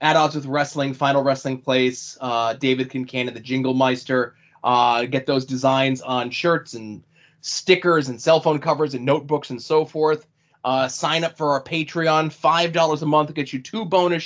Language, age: English, 20-39